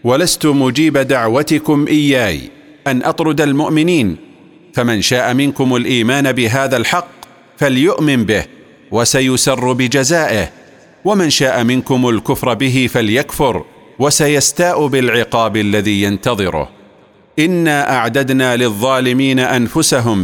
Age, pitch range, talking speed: 40-59, 120-145 Hz, 90 wpm